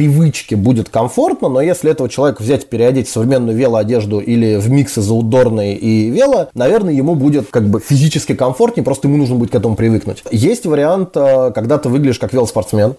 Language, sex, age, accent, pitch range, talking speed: Russian, male, 20-39, native, 110-145 Hz, 175 wpm